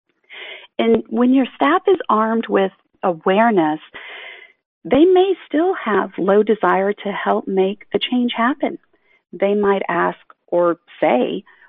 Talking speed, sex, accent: 130 wpm, female, American